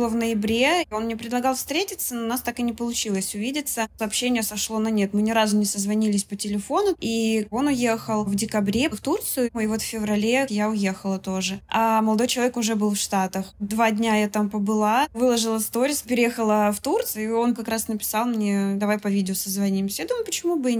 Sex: female